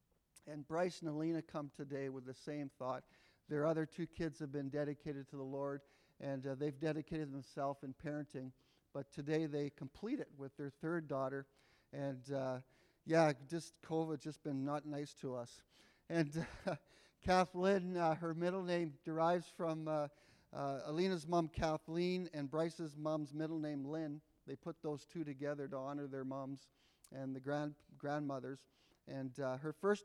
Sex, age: male, 50-69